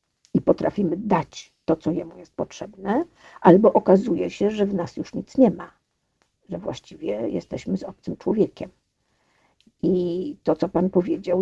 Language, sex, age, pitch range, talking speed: Polish, female, 50-69, 160-180 Hz, 145 wpm